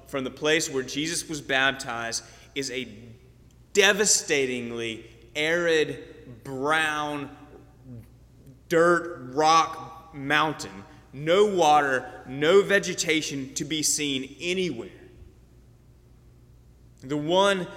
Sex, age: male, 30-49